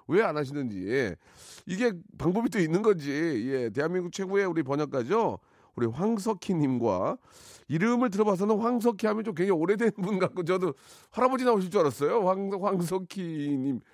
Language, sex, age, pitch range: Korean, male, 40-59, 115-185 Hz